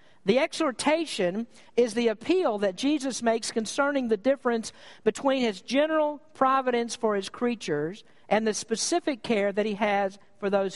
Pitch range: 200-245 Hz